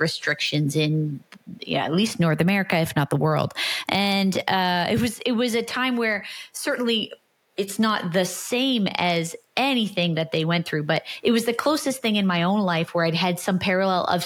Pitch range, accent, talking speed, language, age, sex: 160-205 Hz, American, 200 wpm, English, 20-39, female